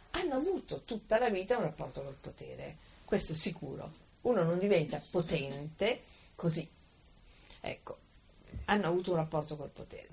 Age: 50-69